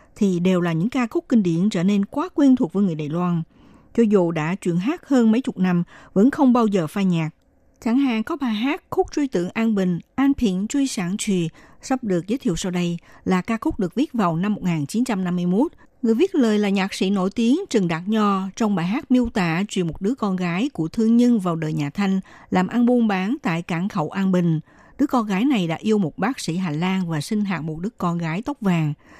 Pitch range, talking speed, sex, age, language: 175-235 Hz, 245 wpm, female, 60-79, Vietnamese